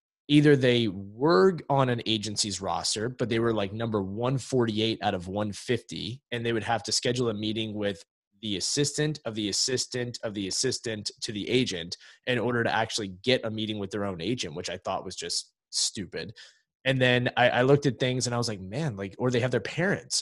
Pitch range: 105-135 Hz